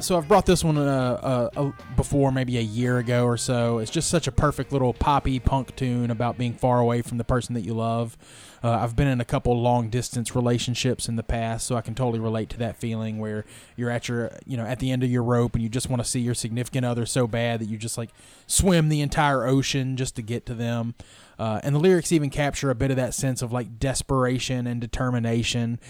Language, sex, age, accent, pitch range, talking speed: English, male, 20-39, American, 120-135 Hz, 245 wpm